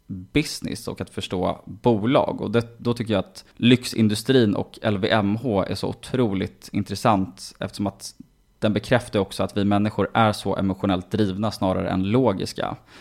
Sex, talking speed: male, 150 wpm